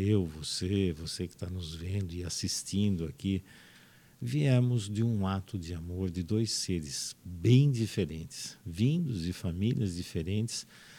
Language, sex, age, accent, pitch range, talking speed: Portuguese, male, 50-69, Brazilian, 90-115 Hz, 135 wpm